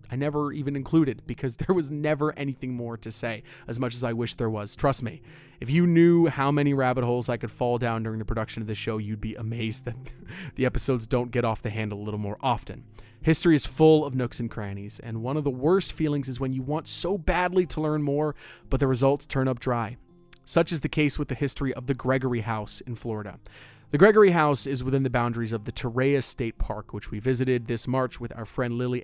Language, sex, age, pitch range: English, male, 30-49, 115-145 Hz